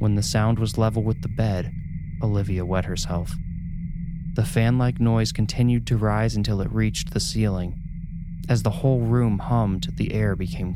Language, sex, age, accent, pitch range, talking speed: English, male, 20-39, American, 95-115 Hz, 165 wpm